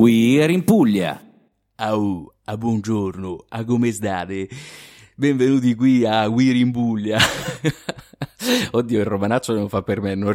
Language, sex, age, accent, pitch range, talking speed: Italian, male, 30-49, native, 105-135 Hz, 145 wpm